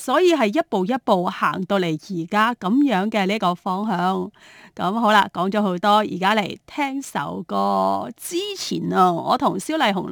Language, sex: Chinese, female